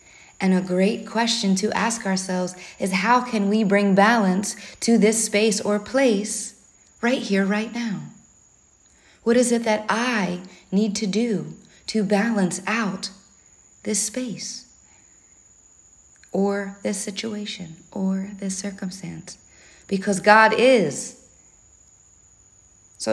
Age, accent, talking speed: 40-59, American, 115 wpm